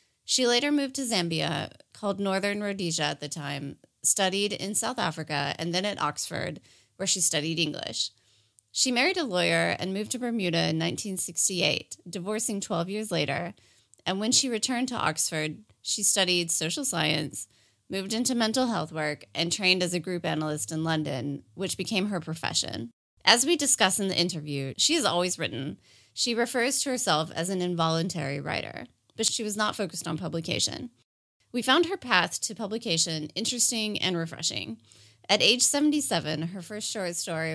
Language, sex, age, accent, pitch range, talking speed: English, female, 20-39, American, 155-210 Hz, 170 wpm